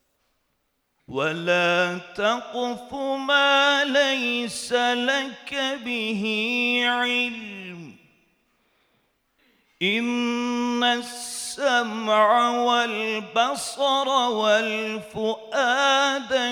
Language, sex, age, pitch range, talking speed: Turkish, male, 40-59, 215-270 Hz, 40 wpm